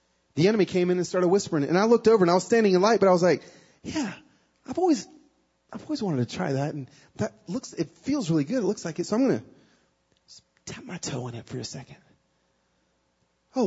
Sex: male